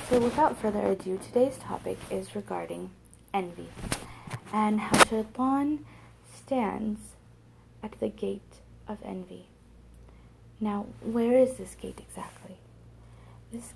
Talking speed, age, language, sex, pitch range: 110 wpm, 30-49, English, female, 195-245 Hz